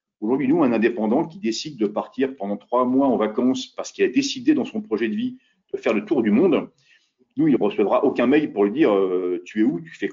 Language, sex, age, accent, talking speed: French, male, 50-69, French, 255 wpm